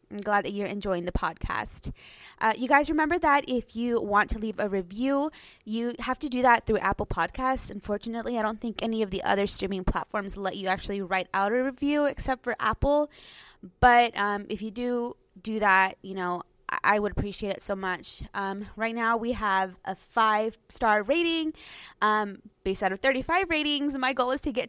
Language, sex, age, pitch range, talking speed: English, female, 20-39, 195-245 Hz, 195 wpm